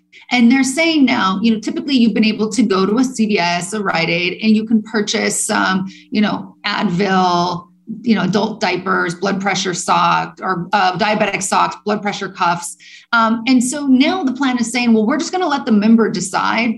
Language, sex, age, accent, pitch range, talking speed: English, female, 30-49, American, 185-230 Hz, 205 wpm